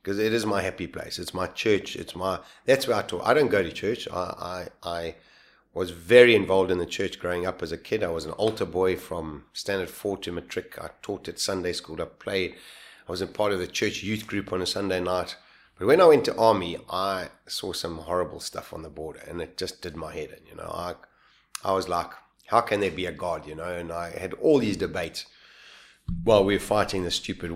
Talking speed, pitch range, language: 240 wpm, 90-110 Hz, English